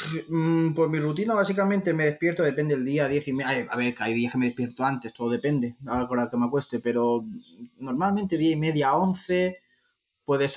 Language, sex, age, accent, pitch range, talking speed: Spanish, male, 20-39, Spanish, 120-160 Hz, 205 wpm